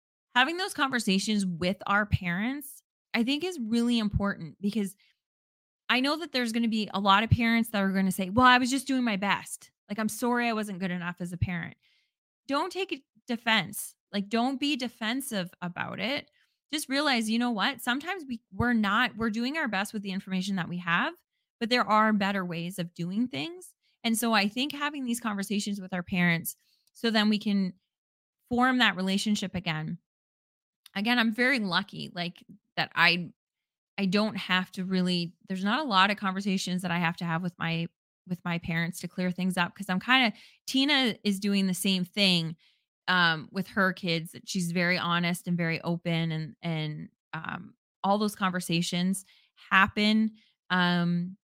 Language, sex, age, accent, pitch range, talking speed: English, female, 20-39, American, 180-235 Hz, 185 wpm